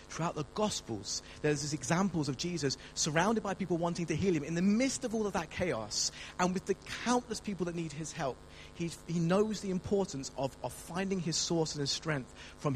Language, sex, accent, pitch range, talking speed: English, male, British, 110-155 Hz, 215 wpm